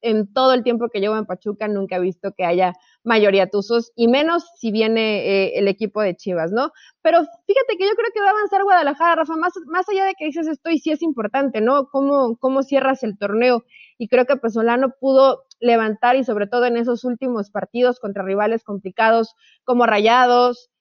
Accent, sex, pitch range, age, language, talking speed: Mexican, female, 210-270 Hz, 30-49, Spanish, 210 wpm